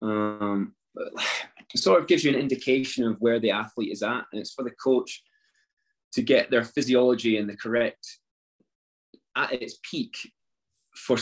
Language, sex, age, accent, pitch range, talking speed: English, male, 20-39, British, 110-130 Hz, 160 wpm